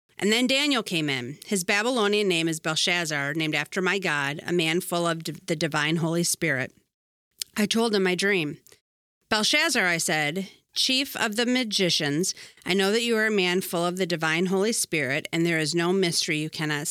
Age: 40-59